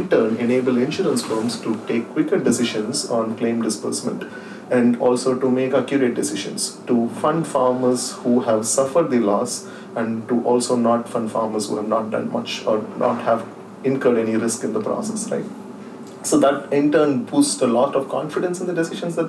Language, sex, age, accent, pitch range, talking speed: English, male, 30-49, Indian, 115-130 Hz, 185 wpm